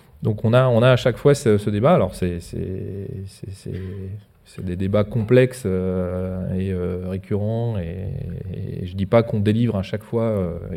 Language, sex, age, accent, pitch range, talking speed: French, male, 30-49, French, 95-120 Hz, 190 wpm